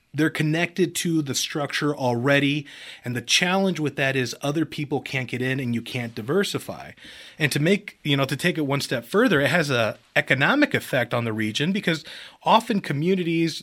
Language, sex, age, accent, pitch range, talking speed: English, male, 30-49, American, 125-155 Hz, 190 wpm